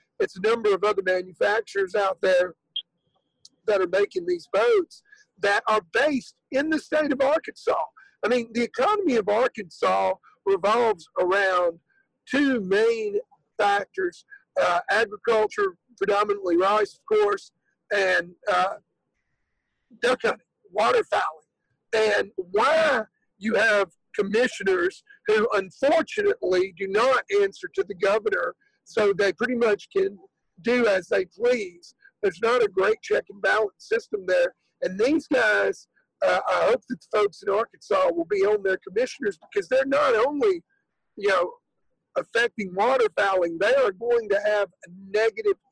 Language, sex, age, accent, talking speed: English, male, 50-69, American, 140 wpm